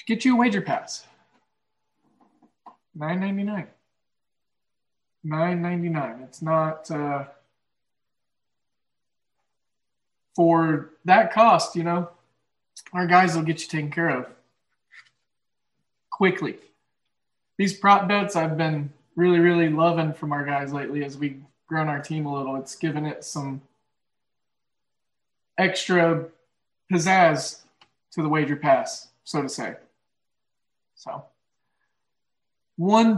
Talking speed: 105 wpm